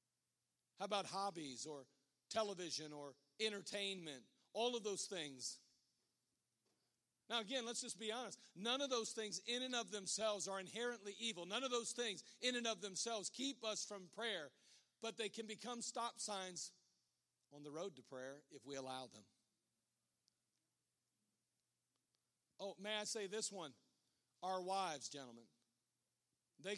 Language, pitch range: English, 175-225 Hz